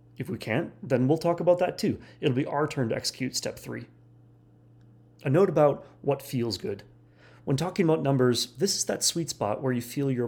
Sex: male